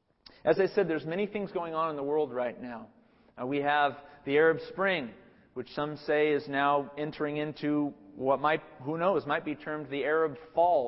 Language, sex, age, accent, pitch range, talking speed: English, male, 40-59, American, 145-175 Hz, 200 wpm